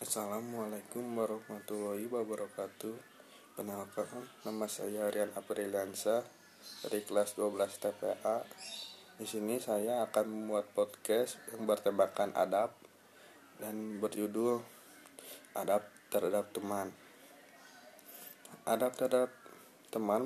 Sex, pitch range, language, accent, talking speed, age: male, 105-115 Hz, Indonesian, native, 85 wpm, 20-39